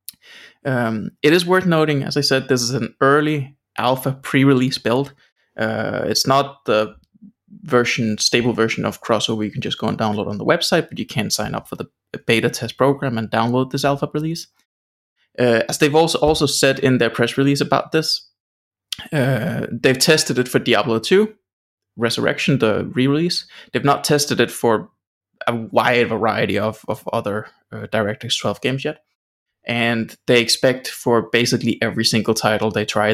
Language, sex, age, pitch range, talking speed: English, male, 20-39, 110-135 Hz, 175 wpm